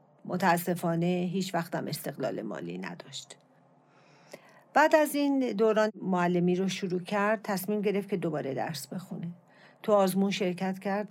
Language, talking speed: Persian, 130 wpm